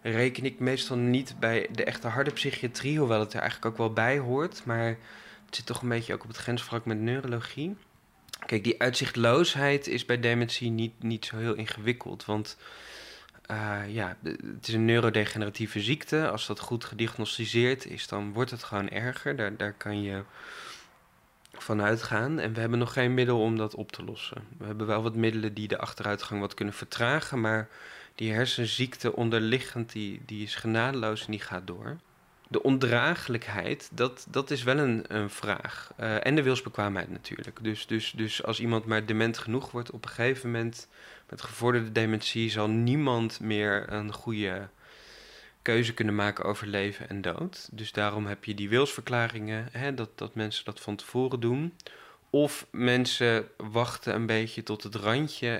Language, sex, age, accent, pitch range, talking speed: Dutch, male, 20-39, Dutch, 110-125 Hz, 175 wpm